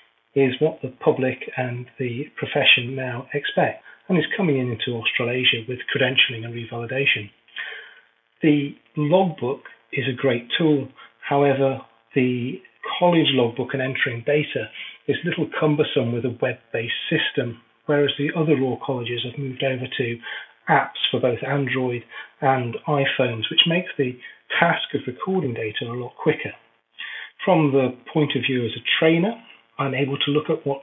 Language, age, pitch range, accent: English, 40-59, 120-145 Hz, British